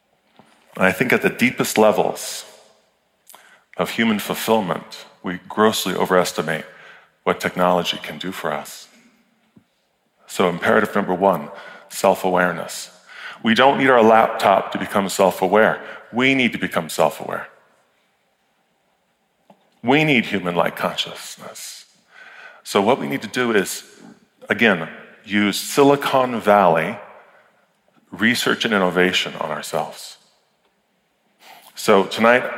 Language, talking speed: English, 110 wpm